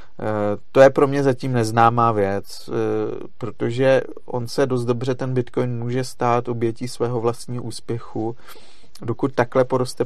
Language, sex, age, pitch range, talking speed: Czech, male, 40-59, 115-125 Hz, 135 wpm